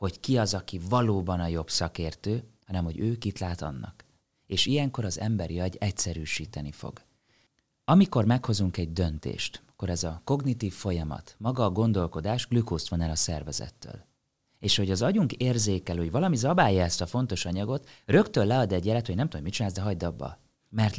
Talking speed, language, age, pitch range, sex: 180 wpm, Hungarian, 30-49, 90-125 Hz, male